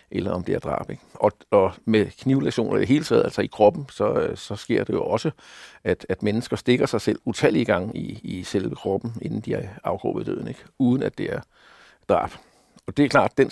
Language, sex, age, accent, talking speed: Danish, male, 60-79, native, 215 wpm